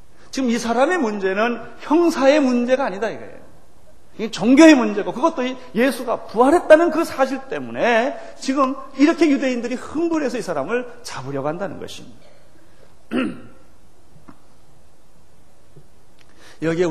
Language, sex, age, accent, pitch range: Korean, male, 40-59, native, 185-270 Hz